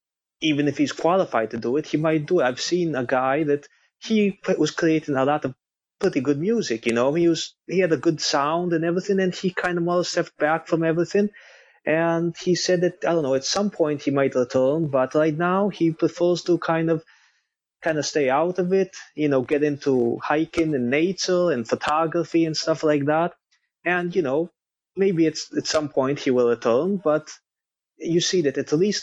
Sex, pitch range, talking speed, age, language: male, 135-170 Hz, 210 wpm, 20-39, English